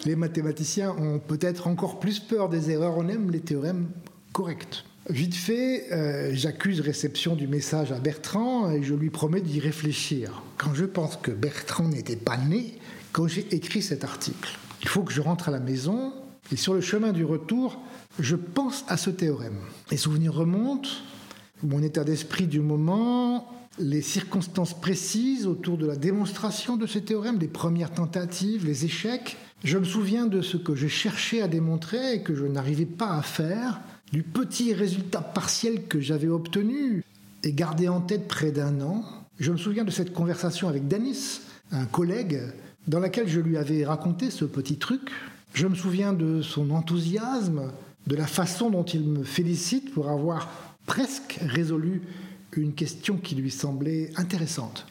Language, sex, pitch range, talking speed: French, male, 155-205 Hz, 170 wpm